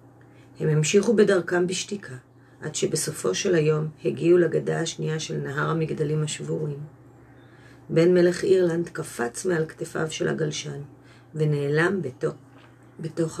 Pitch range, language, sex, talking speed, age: 135-180 Hz, Hebrew, female, 115 wpm, 40-59